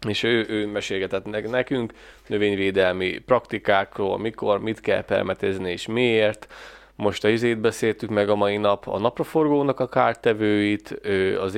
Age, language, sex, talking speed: 20-39, Hungarian, male, 135 wpm